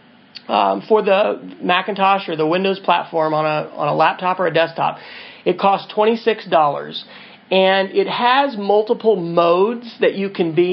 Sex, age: male, 40-59